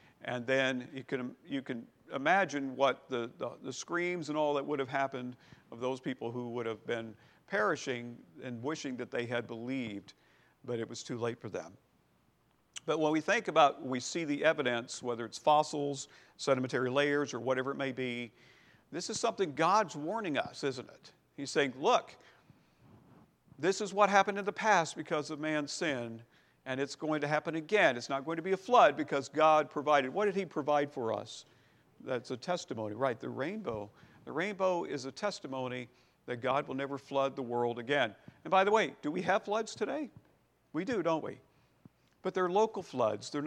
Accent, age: American, 50-69